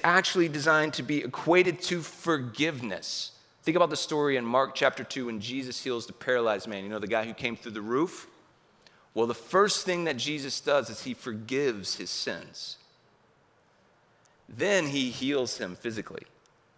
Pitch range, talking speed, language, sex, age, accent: 120-165 Hz, 170 wpm, English, male, 30-49, American